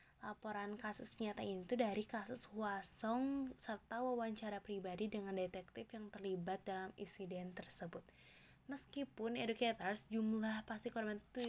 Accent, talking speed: native, 120 wpm